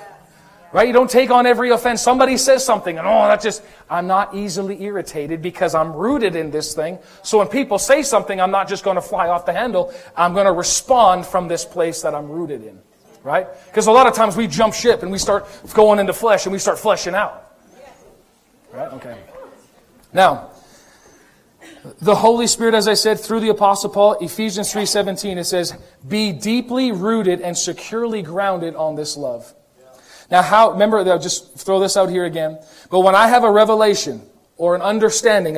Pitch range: 175-215 Hz